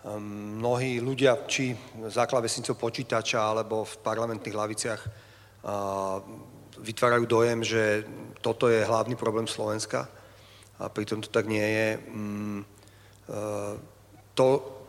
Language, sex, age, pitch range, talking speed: Slovak, male, 40-59, 110-125 Hz, 115 wpm